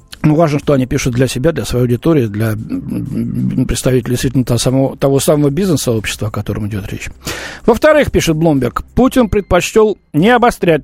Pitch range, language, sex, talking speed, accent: 130-195 Hz, Russian, male, 160 wpm, native